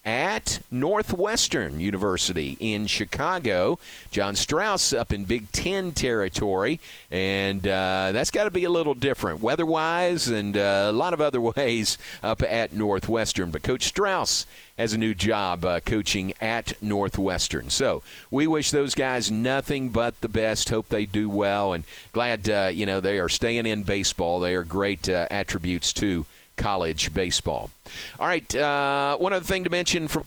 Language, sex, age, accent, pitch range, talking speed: English, male, 50-69, American, 105-140 Hz, 165 wpm